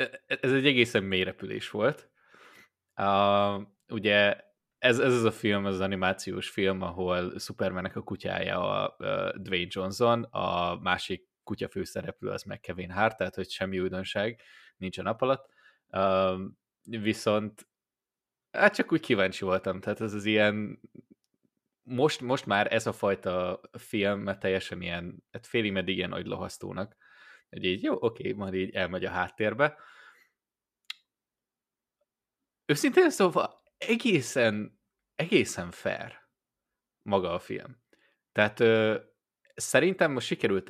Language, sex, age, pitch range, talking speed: Hungarian, male, 20-39, 95-110 Hz, 125 wpm